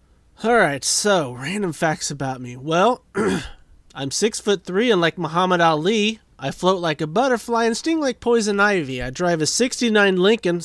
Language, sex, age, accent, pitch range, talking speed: English, male, 30-49, American, 140-220 Hz, 170 wpm